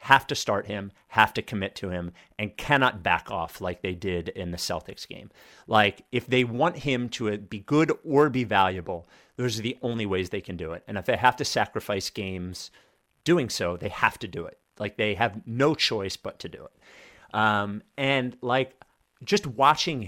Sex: male